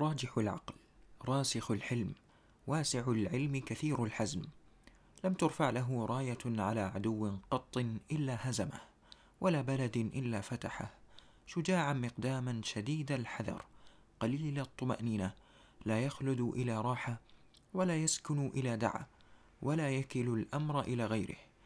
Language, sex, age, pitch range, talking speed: Arabic, male, 30-49, 115-145 Hz, 110 wpm